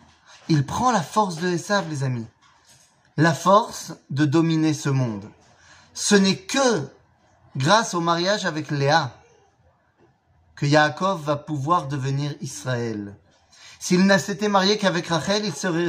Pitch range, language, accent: 145-190 Hz, French, French